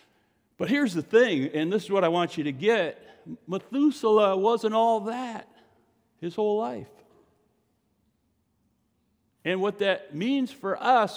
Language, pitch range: English, 145-230 Hz